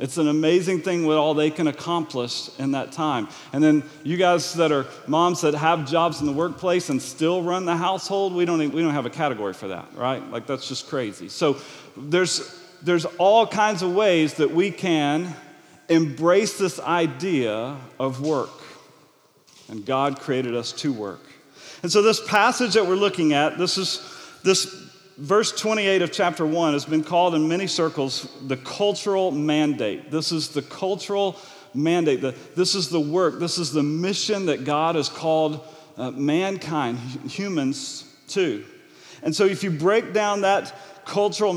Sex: male